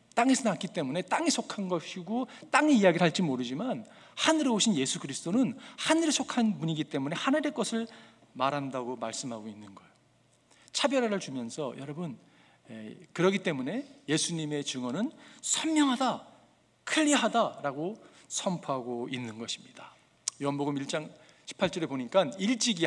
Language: English